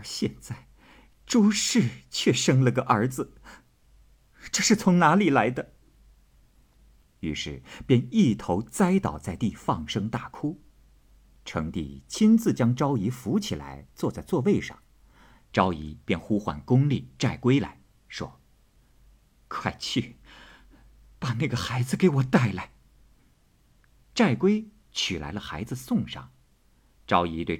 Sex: male